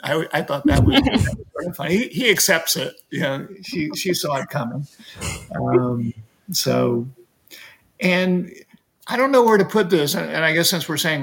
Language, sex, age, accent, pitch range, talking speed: English, male, 50-69, American, 150-185 Hz, 180 wpm